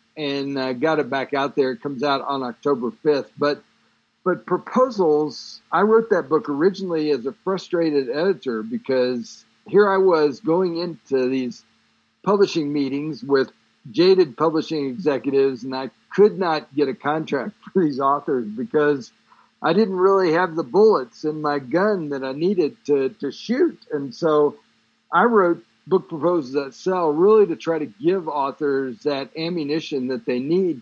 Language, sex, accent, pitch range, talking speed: English, male, American, 135-180 Hz, 165 wpm